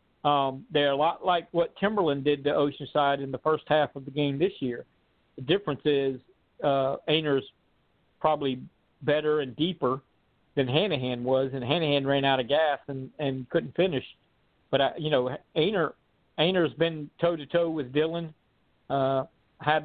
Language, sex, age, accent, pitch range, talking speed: English, male, 50-69, American, 135-155 Hz, 160 wpm